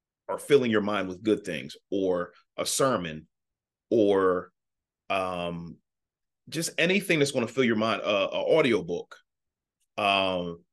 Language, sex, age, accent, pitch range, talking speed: English, male, 30-49, American, 90-115 Hz, 140 wpm